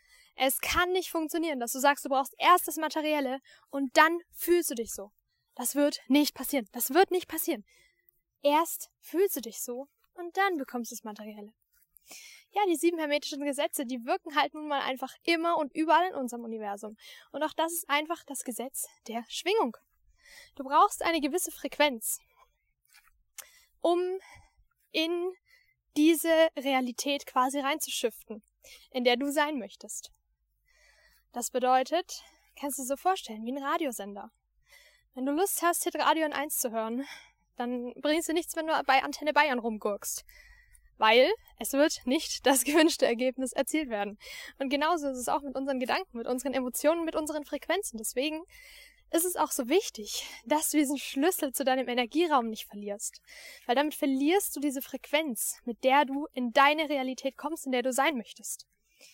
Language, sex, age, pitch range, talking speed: German, female, 10-29, 255-330 Hz, 165 wpm